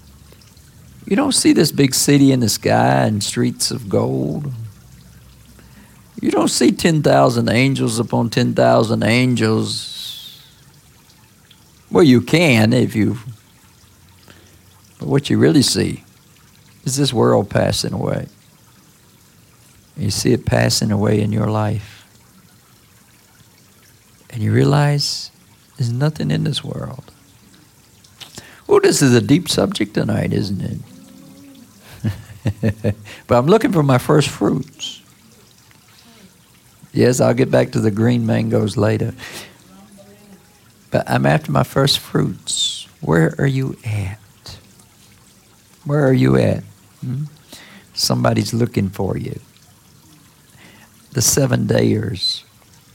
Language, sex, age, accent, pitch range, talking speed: English, male, 50-69, American, 100-135 Hz, 110 wpm